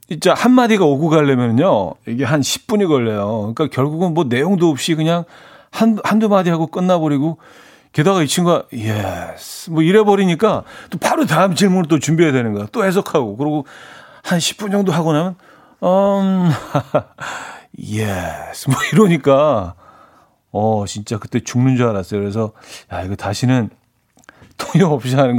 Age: 40-59